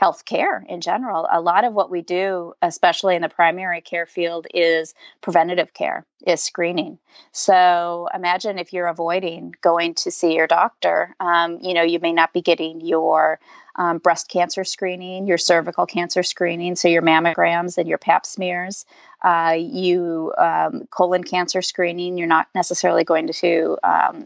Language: English